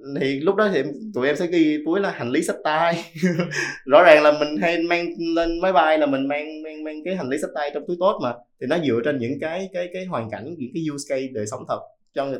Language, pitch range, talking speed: Vietnamese, 115-160 Hz, 270 wpm